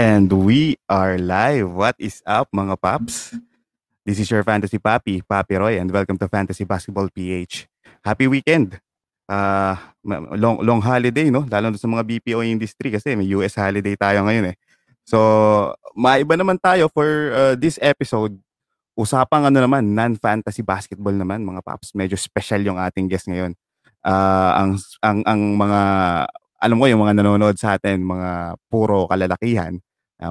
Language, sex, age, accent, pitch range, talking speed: English, male, 20-39, Filipino, 95-115 Hz, 160 wpm